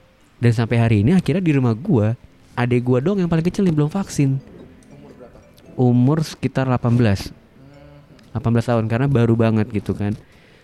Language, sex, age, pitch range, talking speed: Indonesian, male, 20-39, 105-135 Hz, 150 wpm